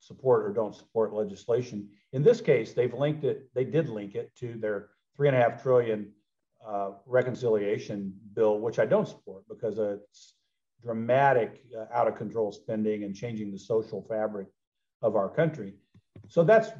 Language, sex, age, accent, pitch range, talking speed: English, male, 50-69, American, 110-140 Hz, 165 wpm